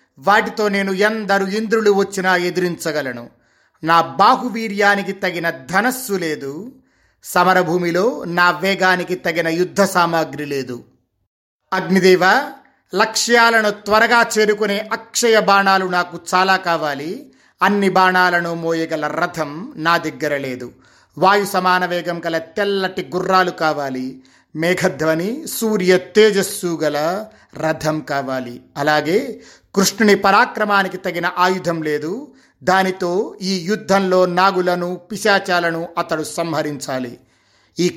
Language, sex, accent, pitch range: Telugu, male, native, 165-200 Hz